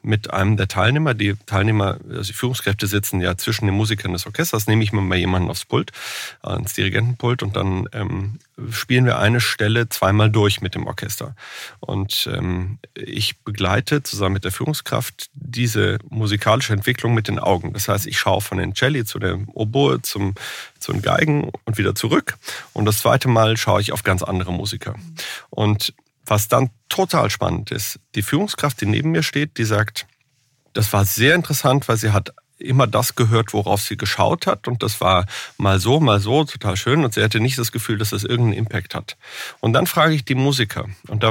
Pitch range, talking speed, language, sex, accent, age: 100-125 Hz, 195 wpm, German, male, German, 30-49